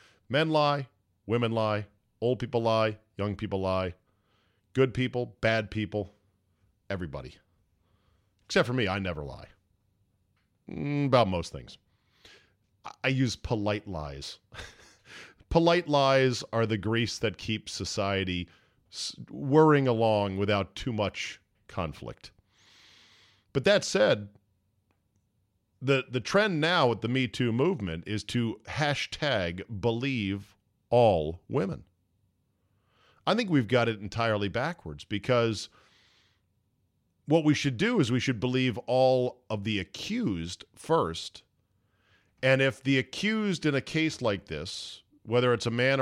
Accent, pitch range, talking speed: American, 95-125 Hz, 125 wpm